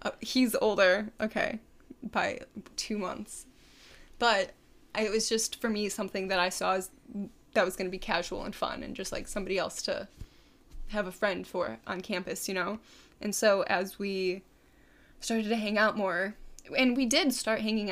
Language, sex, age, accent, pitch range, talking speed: English, female, 20-39, American, 190-220 Hz, 180 wpm